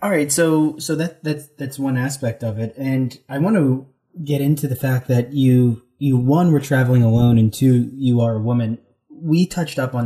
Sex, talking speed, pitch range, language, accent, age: male, 215 wpm, 115-140 Hz, English, American, 30-49